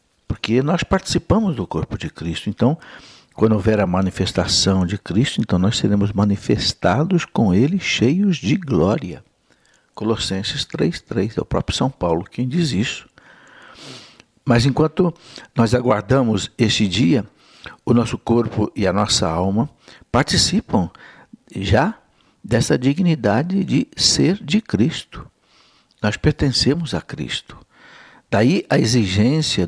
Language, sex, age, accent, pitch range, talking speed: Portuguese, male, 60-79, Brazilian, 95-125 Hz, 125 wpm